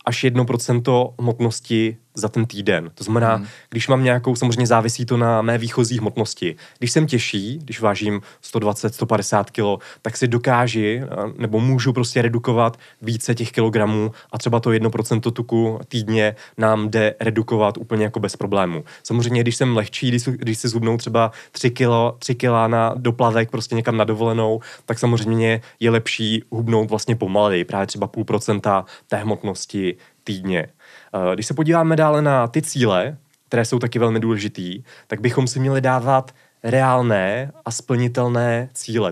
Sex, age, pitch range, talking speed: male, 20-39, 110-120 Hz, 155 wpm